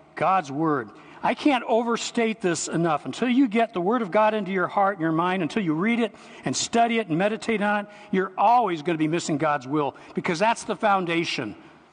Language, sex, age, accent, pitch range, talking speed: English, male, 60-79, American, 160-225 Hz, 215 wpm